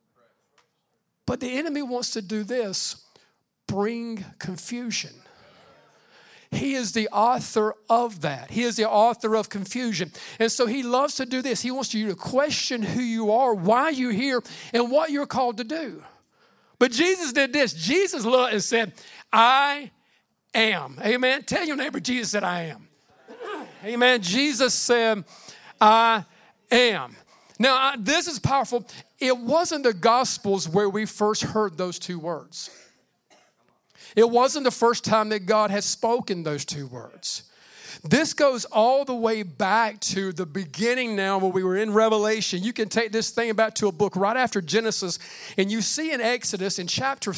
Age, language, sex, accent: 50-69, English, male, American